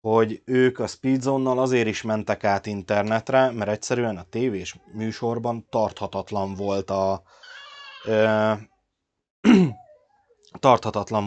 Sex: male